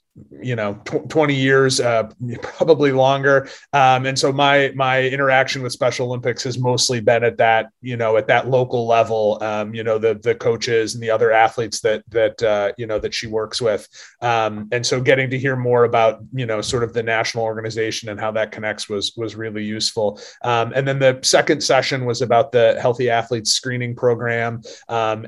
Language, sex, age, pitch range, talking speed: English, male, 30-49, 110-130 Hz, 195 wpm